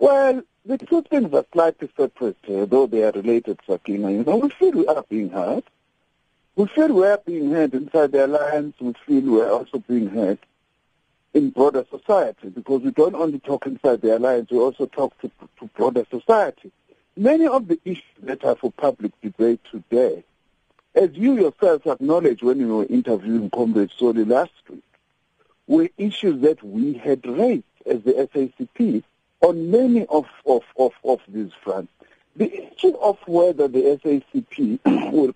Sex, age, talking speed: male, 60-79, 170 wpm